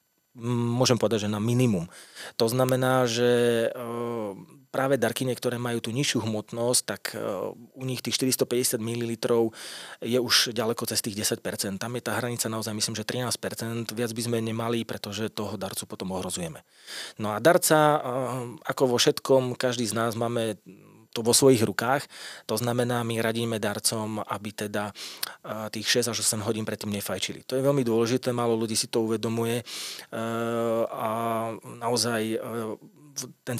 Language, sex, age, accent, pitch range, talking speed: Czech, male, 30-49, native, 110-125 Hz, 150 wpm